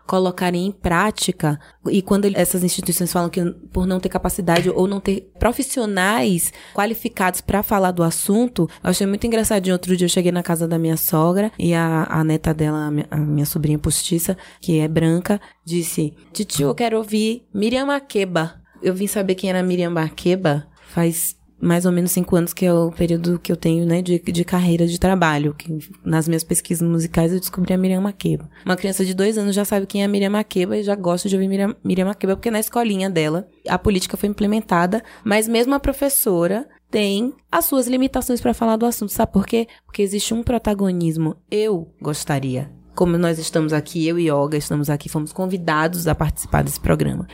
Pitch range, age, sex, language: 165-205 Hz, 20-39, female, Portuguese